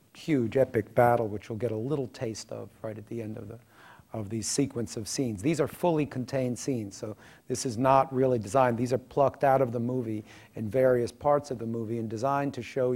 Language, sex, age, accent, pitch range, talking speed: English, male, 50-69, American, 115-135 Hz, 225 wpm